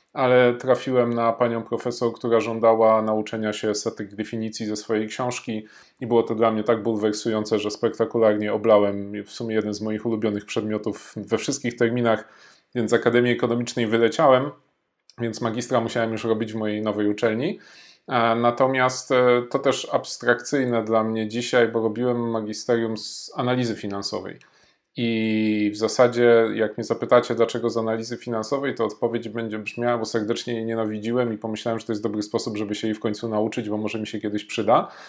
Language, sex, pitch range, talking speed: Polish, male, 110-120 Hz, 170 wpm